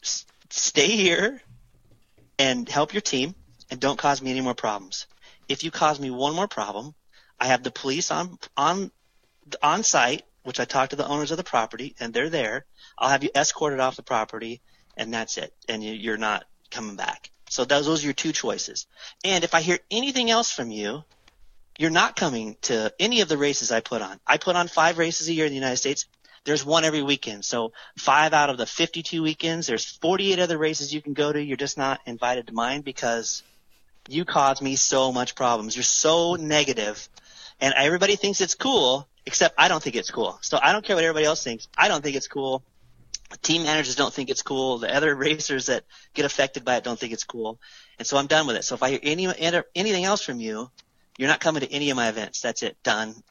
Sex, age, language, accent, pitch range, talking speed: male, 30-49, English, American, 120-160 Hz, 220 wpm